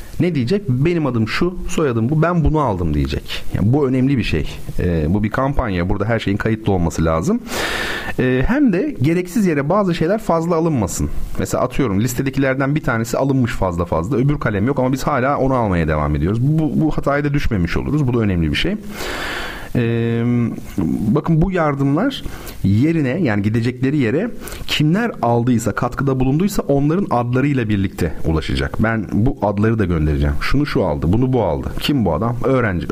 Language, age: Turkish, 40-59